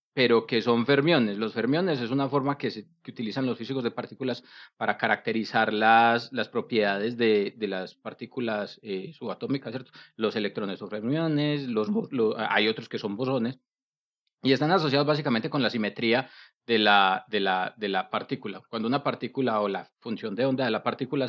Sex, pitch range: male, 115-150 Hz